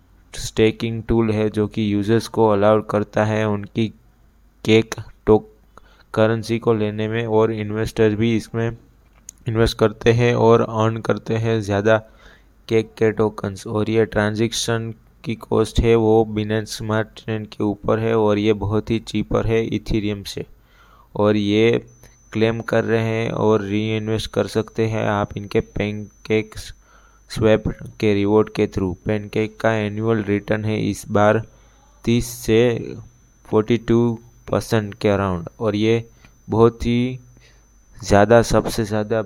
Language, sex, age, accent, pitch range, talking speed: Hindi, male, 20-39, native, 105-115 Hz, 140 wpm